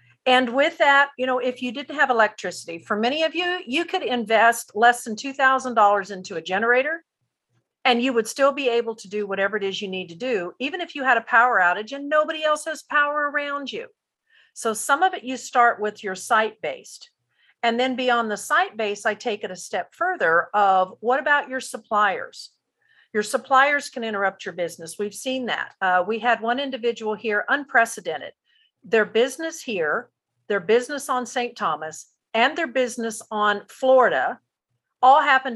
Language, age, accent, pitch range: English, 50-69, American, 200-265 Hz